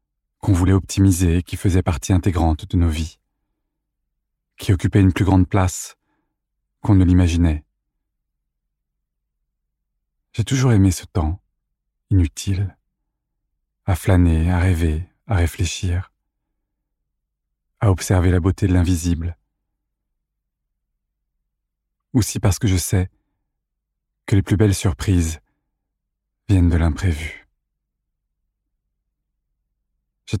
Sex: male